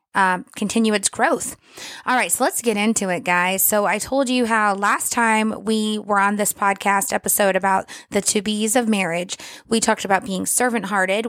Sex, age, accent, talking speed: female, 20-39, American, 195 wpm